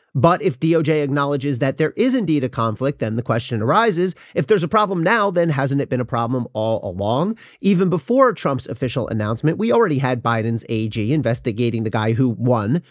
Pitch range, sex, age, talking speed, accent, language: 120-165 Hz, male, 30-49, 195 wpm, American, English